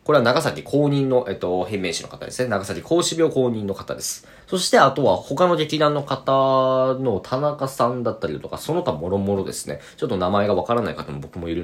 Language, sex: Japanese, male